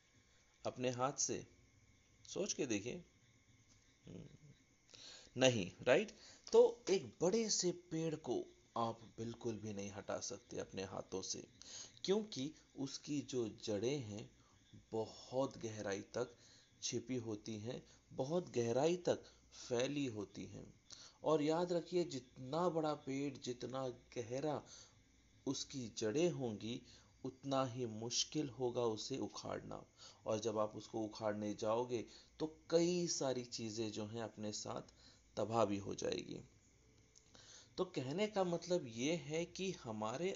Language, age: Hindi, 40-59